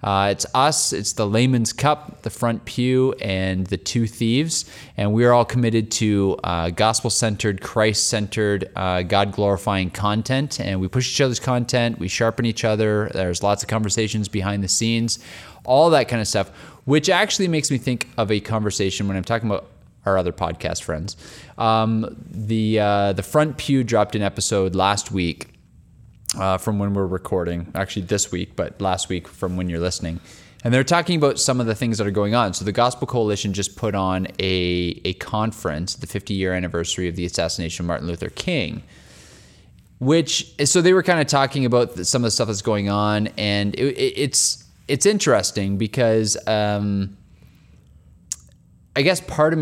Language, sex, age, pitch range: English, male, 20-39, 95-120 Hz